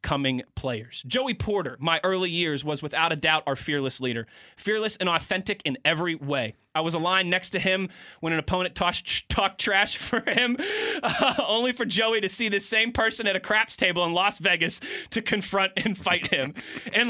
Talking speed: 200 wpm